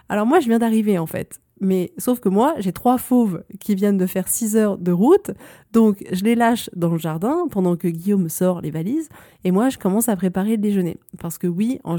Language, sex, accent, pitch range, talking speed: French, female, French, 185-235 Hz, 235 wpm